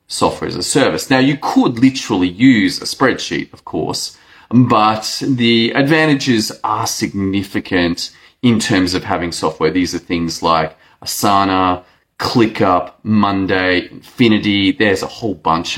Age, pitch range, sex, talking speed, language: 30-49, 90-140 Hz, male, 135 wpm, English